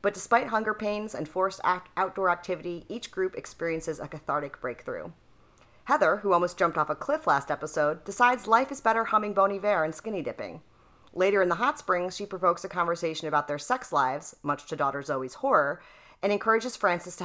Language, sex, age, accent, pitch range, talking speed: English, female, 40-59, American, 155-200 Hz, 190 wpm